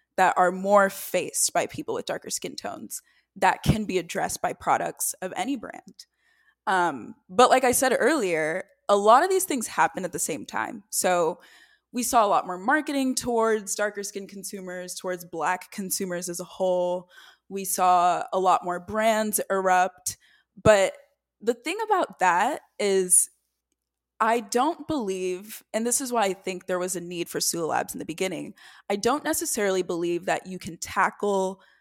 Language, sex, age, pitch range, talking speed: English, female, 20-39, 180-230 Hz, 175 wpm